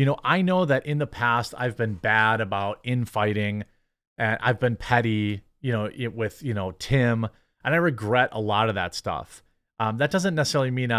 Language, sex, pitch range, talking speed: English, male, 110-145 Hz, 195 wpm